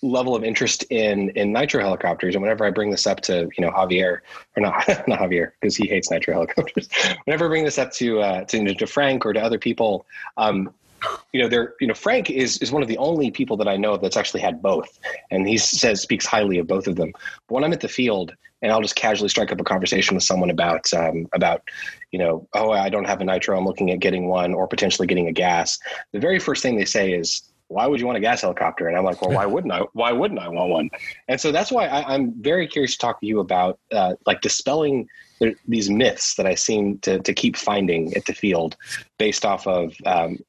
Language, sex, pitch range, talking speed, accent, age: English, male, 95-135 Hz, 245 wpm, American, 20-39